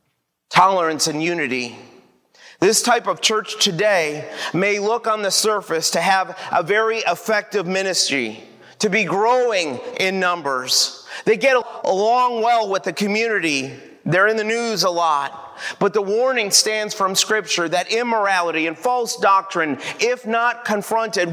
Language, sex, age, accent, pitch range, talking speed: English, male, 30-49, American, 165-225 Hz, 145 wpm